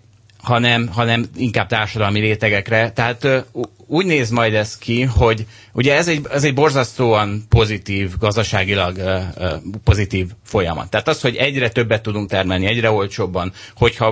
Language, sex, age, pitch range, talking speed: Hungarian, male, 30-49, 100-125 Hz, 150 wpm